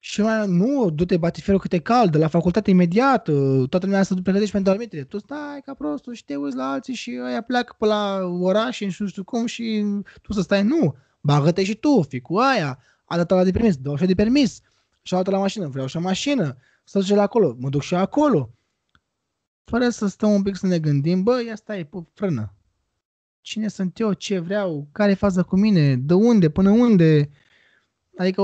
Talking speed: 205 wpm